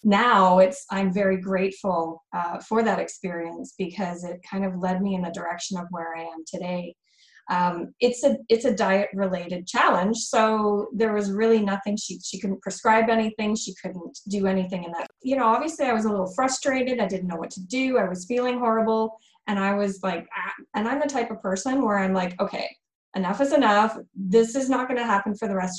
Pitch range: 185-220 Hz